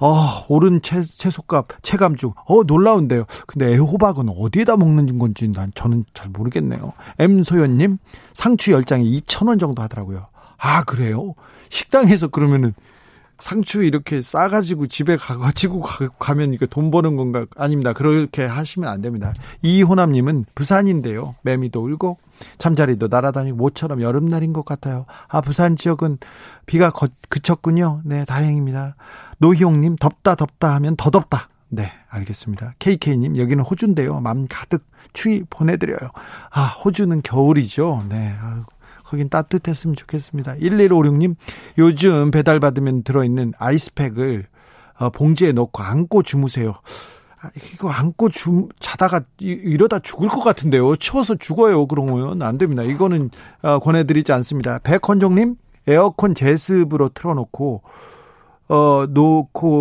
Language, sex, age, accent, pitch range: Korean, male, 40-59, native, 130-175 Hz